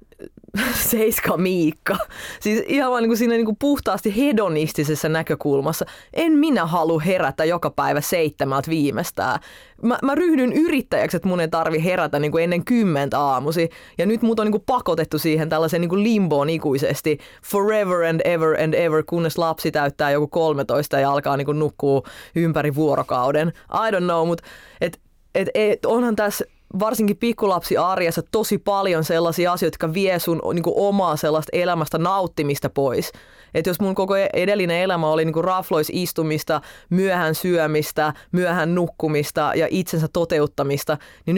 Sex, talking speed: female, 150 wpm